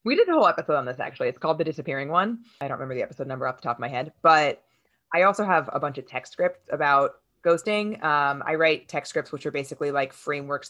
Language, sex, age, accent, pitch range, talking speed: English, female, 20-39, American, 145-175 Hz, 260 wpm